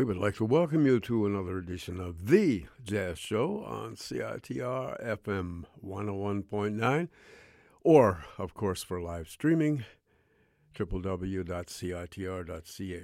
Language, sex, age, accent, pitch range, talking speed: English, male, 60-79, American, 90-105 Hz, 110 wpm